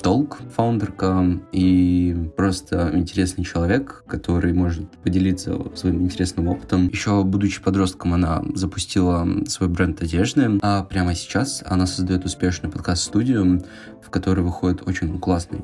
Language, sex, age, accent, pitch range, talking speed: Russian, male, 20-39, native, 90-100 Hz, 125 wpm